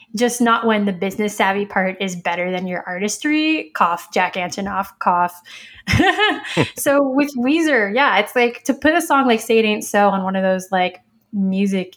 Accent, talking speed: American, 185 wpm